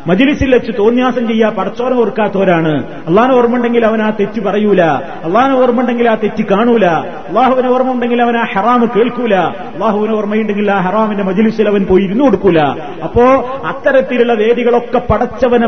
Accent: native